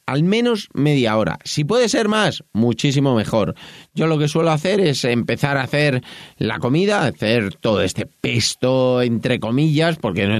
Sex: male